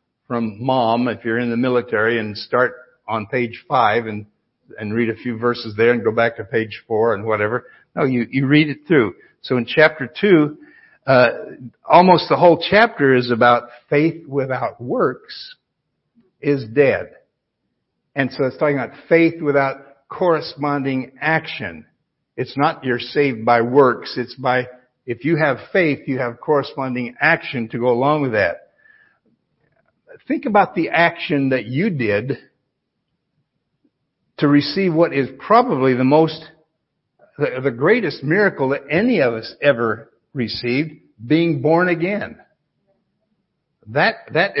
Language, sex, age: English, male, 60-79